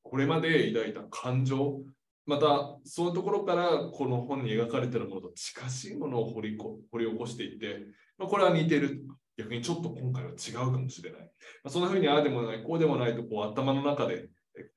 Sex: male